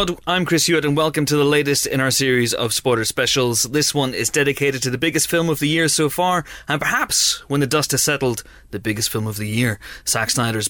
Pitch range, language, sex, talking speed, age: 110-150 Hz, English, male, 235 wpm, 30-49